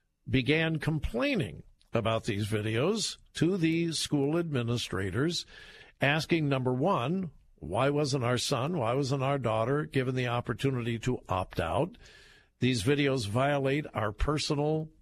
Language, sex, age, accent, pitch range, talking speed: English, male, 50-69, American, 120-160 Hz, 125 wpm